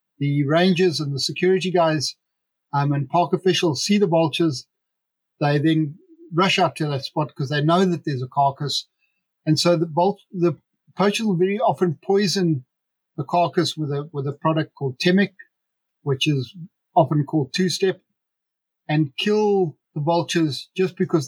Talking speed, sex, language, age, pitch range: 160 wpm, male, English, 50-69, 150-185 Hz